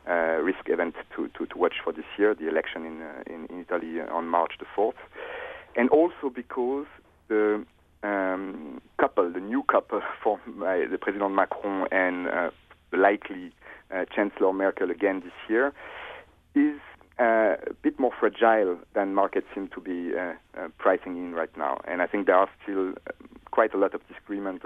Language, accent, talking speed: English, French, 175 wpm